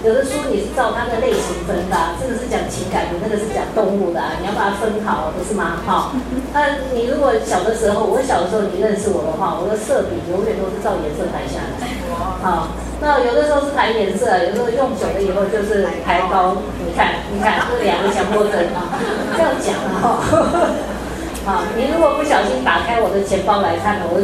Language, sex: Chinese, female